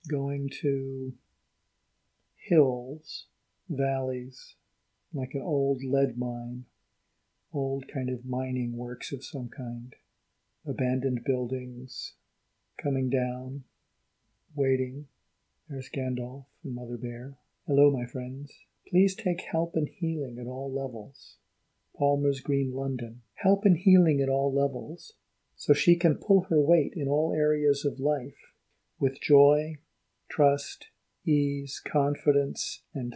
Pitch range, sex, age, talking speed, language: 125-145 Hz, male, 50-69, 115 wpm, English